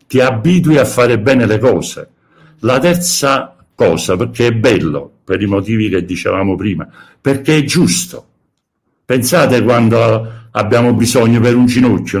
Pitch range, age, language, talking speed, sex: 105-135 Hz, 60-79, Italian, 145 wpm, male